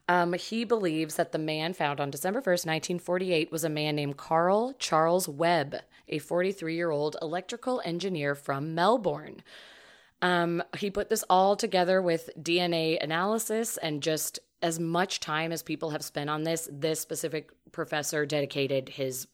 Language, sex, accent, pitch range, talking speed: English, female, American, 155-185 Hz, 150 wpm